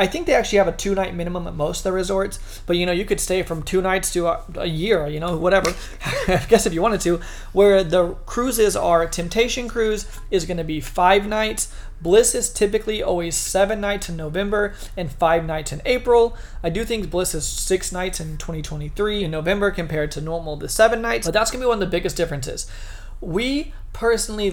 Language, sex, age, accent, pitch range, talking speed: English, male, 30-49, American, 170-210 Hz, 215 wpm